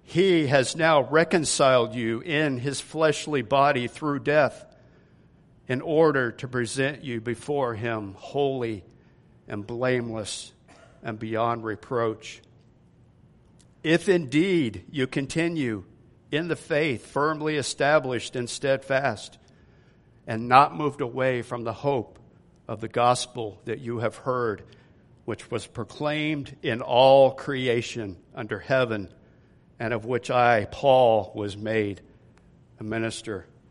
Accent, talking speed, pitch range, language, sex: American, 115 wpm, 115-140 Hz, English, male